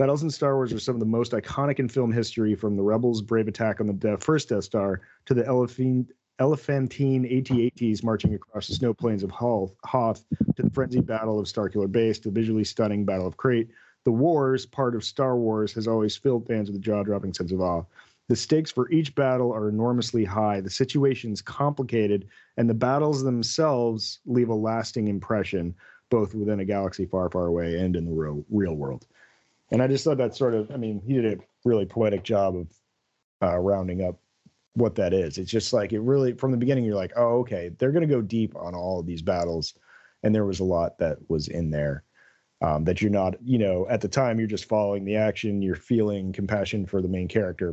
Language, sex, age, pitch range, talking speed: English, male, 40-59, 95-120 Hz, 215 wpm